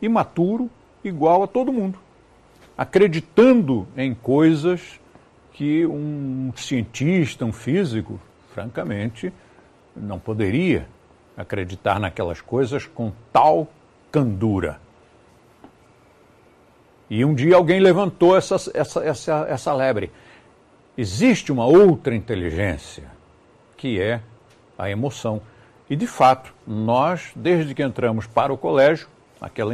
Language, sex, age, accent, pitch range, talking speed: Portuguese, male, 60-79, Brazilian, 115-175 Hz, 100 wpm